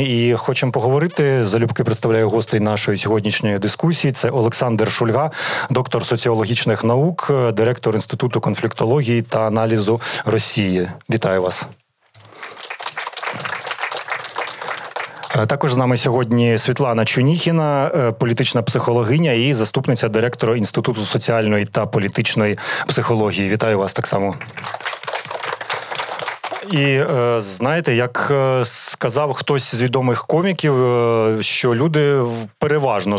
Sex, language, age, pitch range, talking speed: male, Ukrainian, 30-49, 110-135 Hz, 100 wpm